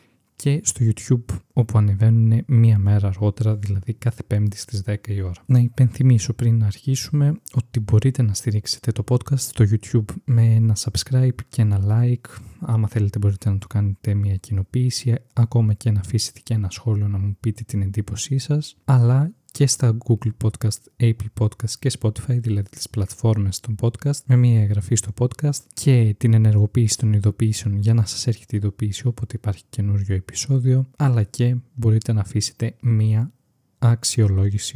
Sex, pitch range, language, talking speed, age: male, 105-120 Hz, Greek, 165 wpm, 20-39